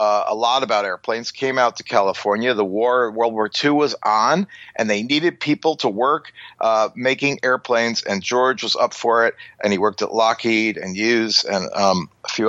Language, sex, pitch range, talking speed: English, male, 110-130 Hz, 200 wpm